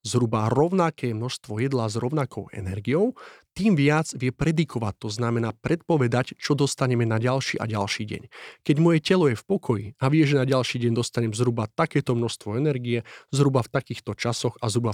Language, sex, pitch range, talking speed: Slovak, male, 115-145 Hz, 175 wpm